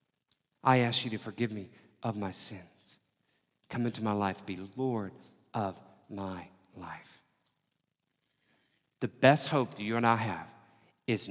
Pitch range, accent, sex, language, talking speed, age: 100-125 Hz, American, male, English, 145 wpm, 40-59